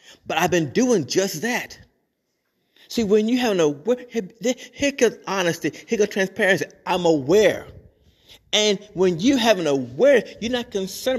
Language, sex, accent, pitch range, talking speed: English, male, American, 155-220 Hz, 155 wpm